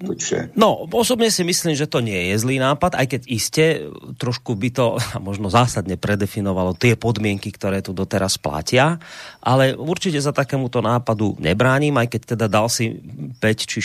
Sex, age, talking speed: male, 30-49, 165 wpm